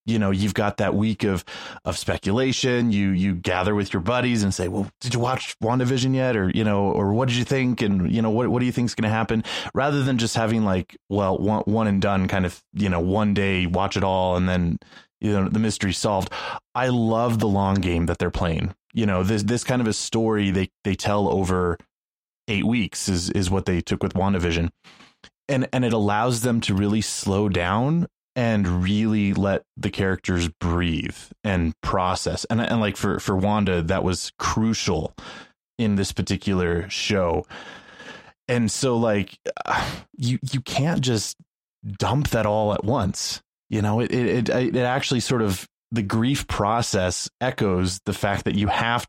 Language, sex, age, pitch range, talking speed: English, male, 20-39, 95-115 Hz, 190 wpm